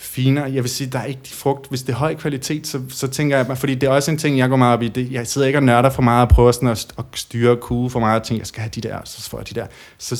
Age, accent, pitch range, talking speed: 30-49, native, 115-130 Hz, 355 wpm